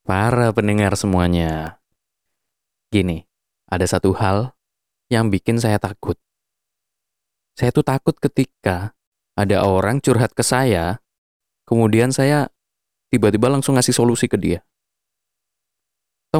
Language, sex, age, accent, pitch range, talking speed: Indonesian, male, 20-39, native, 95-125 Hz, 105 wpm